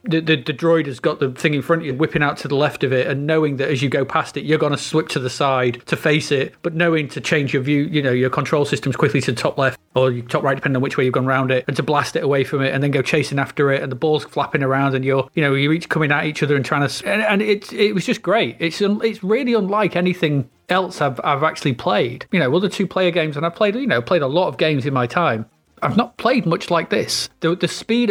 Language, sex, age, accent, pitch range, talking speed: English, male, 30-49, British, 135-175 Hz, 305 wpm